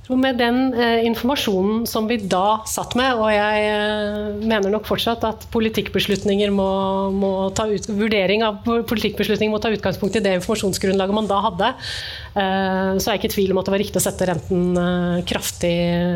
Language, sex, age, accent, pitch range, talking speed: English, female, 30-49, Swedish, 185-210 Hz, 170 wpm